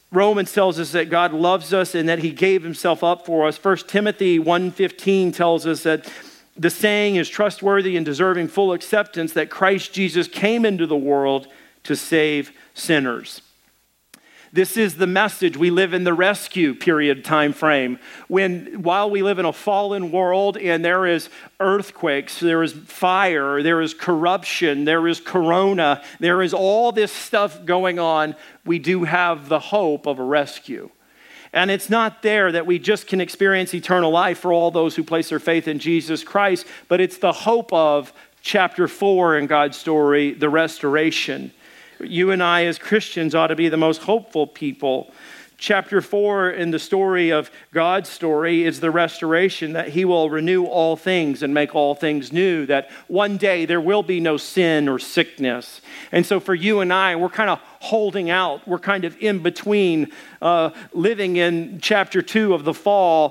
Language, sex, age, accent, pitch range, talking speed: English, male, 50-69, American, 160-190 Hz, 180 wpm